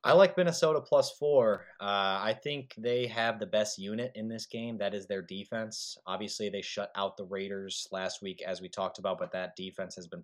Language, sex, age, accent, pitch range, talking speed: English, male, 20-39, American, 90-115 Hz, 215 wpm